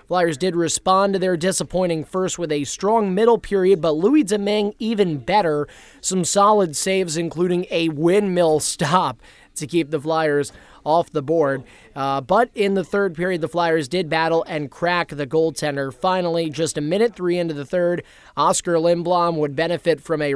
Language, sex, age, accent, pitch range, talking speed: English, male, 20-39, American, 150-180 Hz, 175 wpm